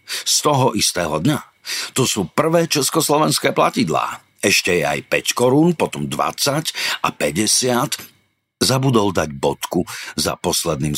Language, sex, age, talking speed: Slovak, male, 50-69, 125 wpm